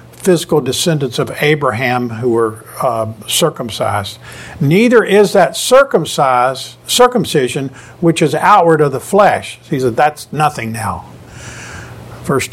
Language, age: English, 50-69